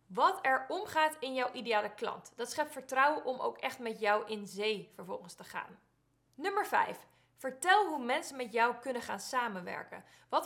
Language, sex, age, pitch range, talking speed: Dutch, female, 20-39, 225-310 Hz, 180 wpm